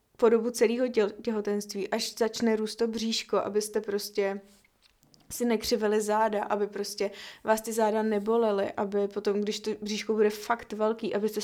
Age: 20-39